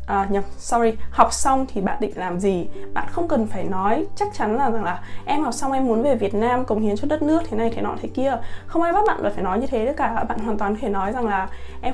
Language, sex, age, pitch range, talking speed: Vietnamese, female, 20-39, 210-270 Hz, 285 wpm